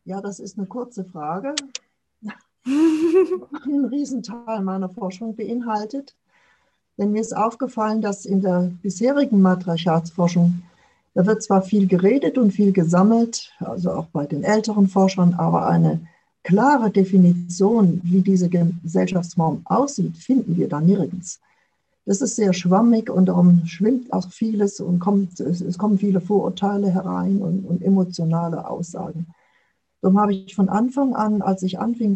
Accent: German